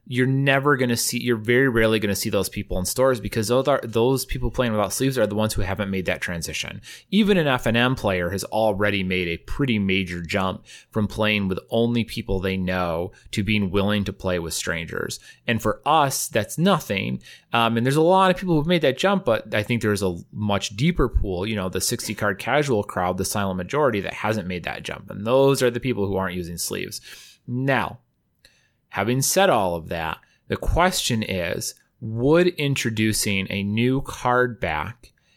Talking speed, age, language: 200 wpm, 30-49, English